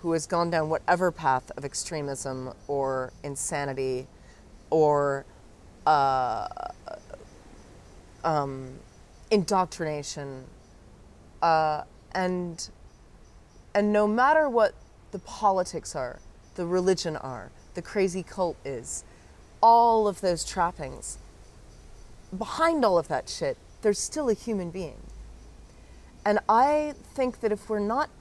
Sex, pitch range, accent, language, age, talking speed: female, 145-210 Hz, American, English, 30-49, 110 wpm